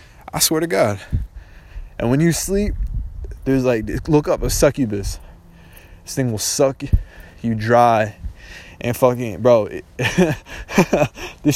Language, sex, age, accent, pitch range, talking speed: English, male, 20-39, American, 95-135 Hz, 125 wpm